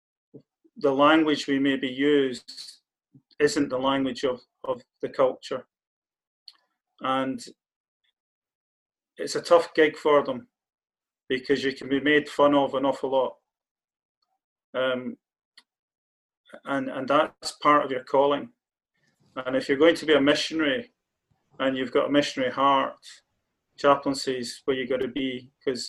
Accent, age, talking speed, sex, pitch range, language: British, 30-49, 135 wpm, male, 130-150 Hz, English